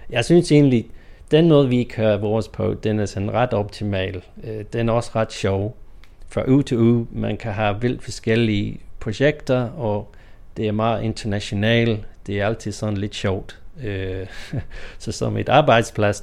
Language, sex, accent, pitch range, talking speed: Danish, male, native, 100-115 Hz, 165 wpm